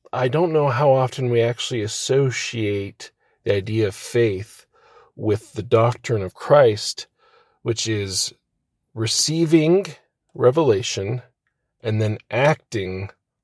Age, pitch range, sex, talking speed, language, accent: 40-59, 110-130 Hz, male, 105 wpm, English, American